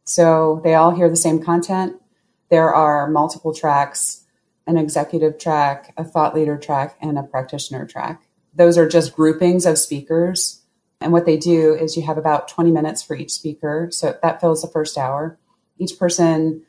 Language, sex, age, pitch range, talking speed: English, female, 30-49, 145-170 Hz, 175 wpm